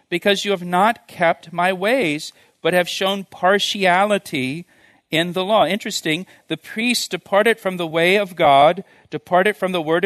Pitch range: 150-190 Hz